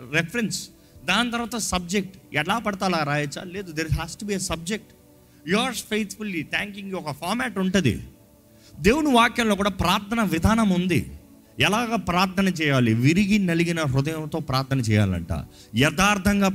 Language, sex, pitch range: Telugu, male, 140-200 Hz